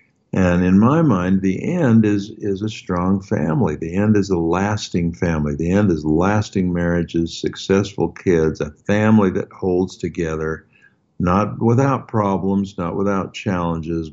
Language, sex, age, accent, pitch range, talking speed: English, male, 60-79, American, 85-110 Hz, 150 wpm